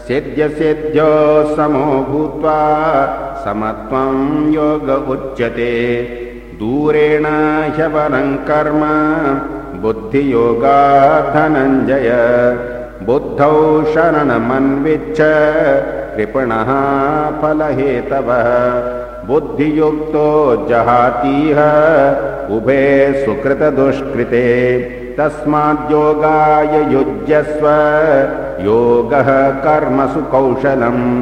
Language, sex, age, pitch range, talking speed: Hindi, male, 60-79, 125-150 Hz, 50 wpm